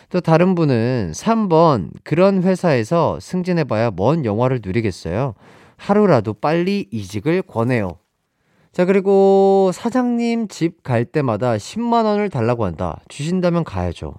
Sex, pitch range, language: male, 105-175 Hz, Korean